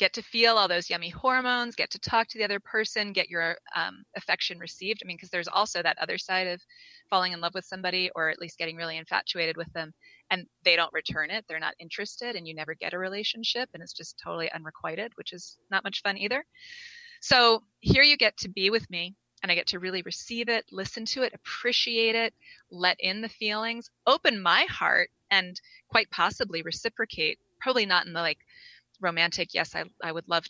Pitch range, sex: 170-225 Hz, female